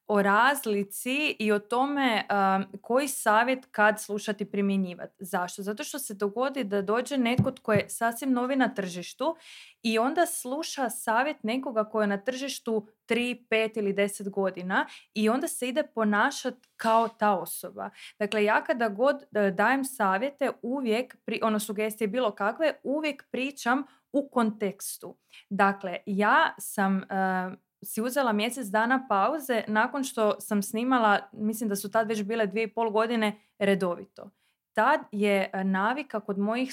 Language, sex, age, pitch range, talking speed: Croatian, female, 20-39, 205-250 Hz, 150 wpm